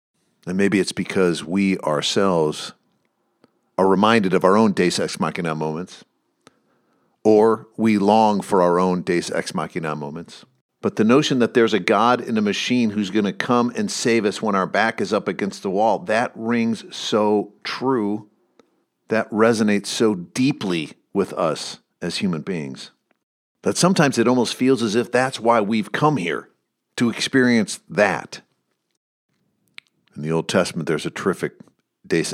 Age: 50-69